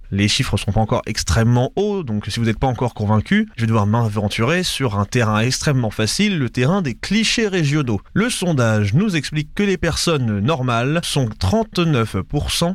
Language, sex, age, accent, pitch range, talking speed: French, male, 20-39, French, 105-155 Hz, 180 wpm